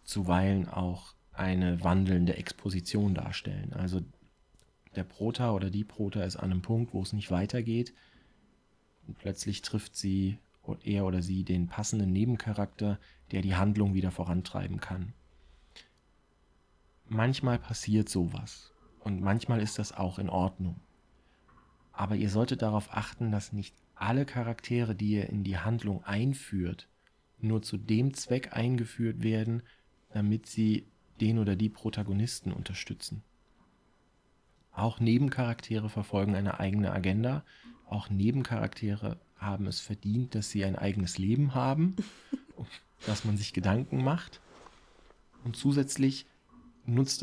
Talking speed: 125 wpm